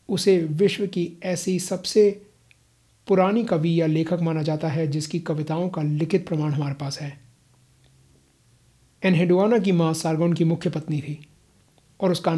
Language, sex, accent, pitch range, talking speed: Hindi, male, native, 155-180 Hz, 145 wpm